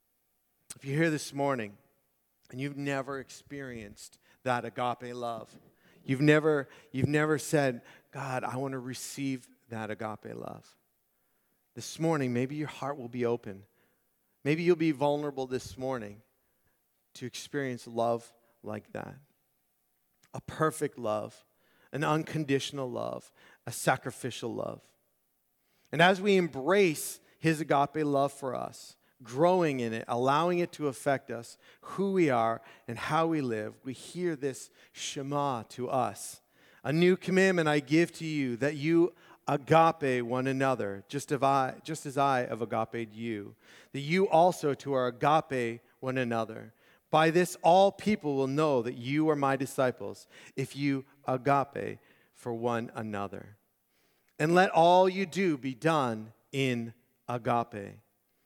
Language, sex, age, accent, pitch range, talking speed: English, male, 40-59, American, 120-155 Hz, 140 wpm